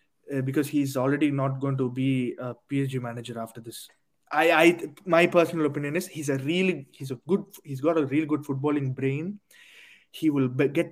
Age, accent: 20-39, native